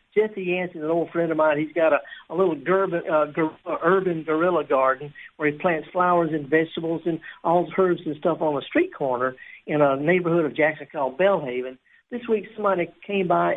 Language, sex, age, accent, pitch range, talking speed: English, male, 60-79, American, 155-200 Hz, 205 wpm